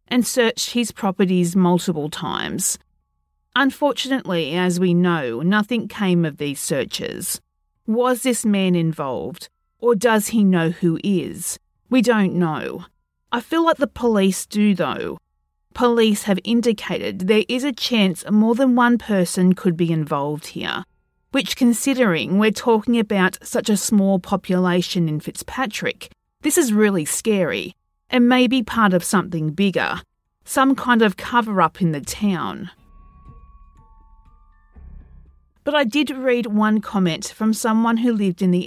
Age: 40-59